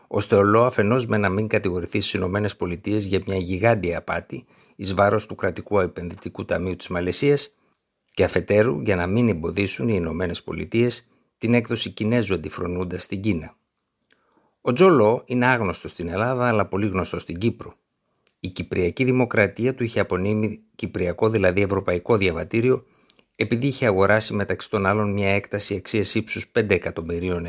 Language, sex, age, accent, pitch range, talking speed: Greek, male, 60-79, native, 90-115 Hz, 150 wpm